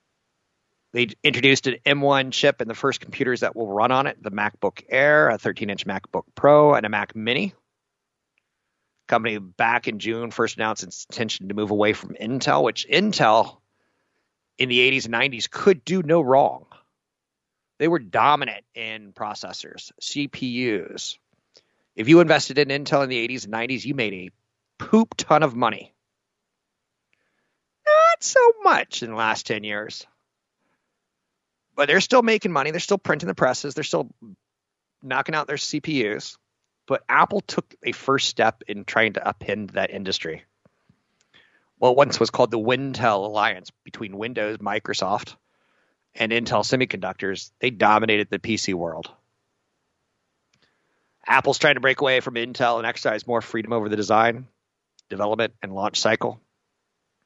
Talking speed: 155 wpm